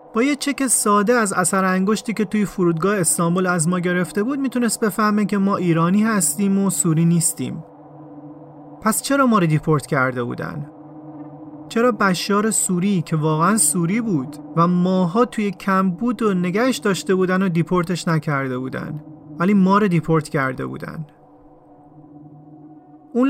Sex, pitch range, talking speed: male, 155-205 Hz, 145 wpm